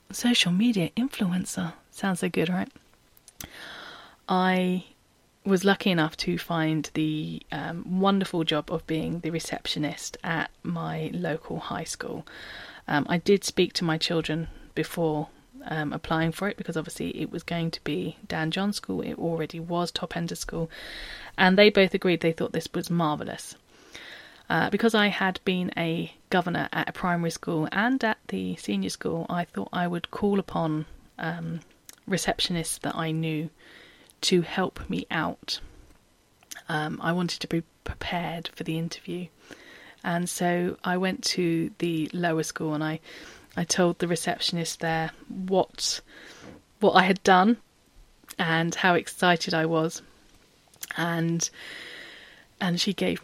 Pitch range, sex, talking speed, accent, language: 160-185 Hz, female, 150 wpm, British, English